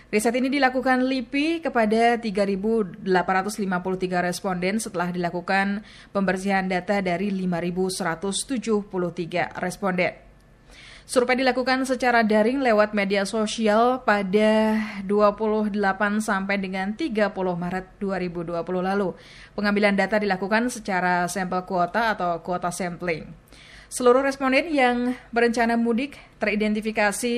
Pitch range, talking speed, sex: 185-230 Hz, 95 wpm, female